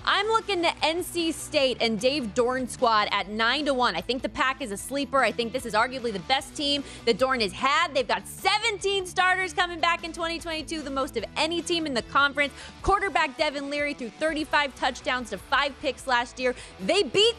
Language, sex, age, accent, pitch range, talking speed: English, female, 20-39, American, 230-315 Hz, 210 wpm